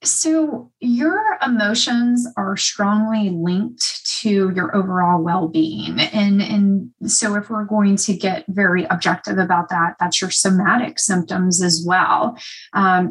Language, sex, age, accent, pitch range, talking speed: English, female, 30-49, American, 180-225 Hz, 135 wpm